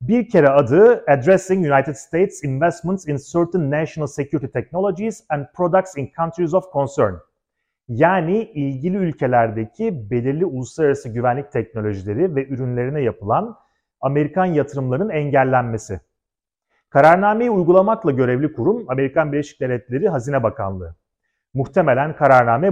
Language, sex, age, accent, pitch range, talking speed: Turkish, male, 40-59, native, 125-180 Hz, 110 wpm